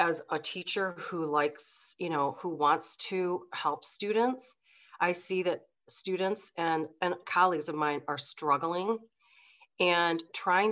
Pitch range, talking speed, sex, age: 150-170 Hz, 140 wpm, female, 40-59